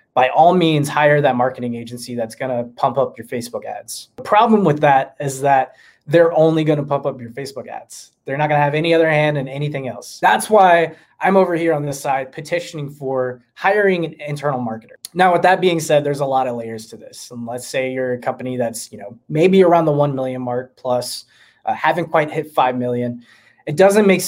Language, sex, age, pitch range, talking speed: English, male, 20-39, 125-155 Hz, 225 wpm